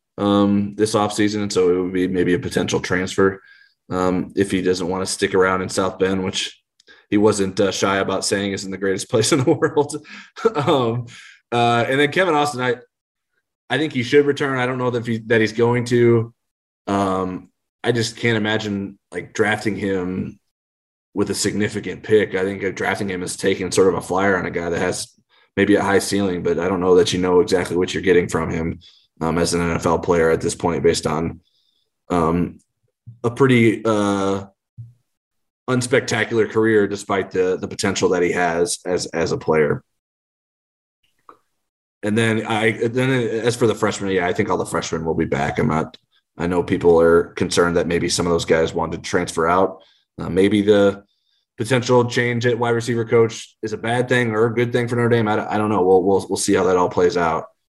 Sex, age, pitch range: male, 20-39, 95-120 Hz